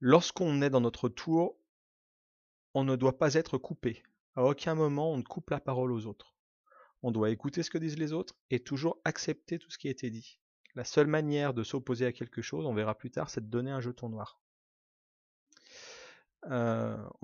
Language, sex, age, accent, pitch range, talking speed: French, male, 30-49, French, 120-155 Hz, 200 wpm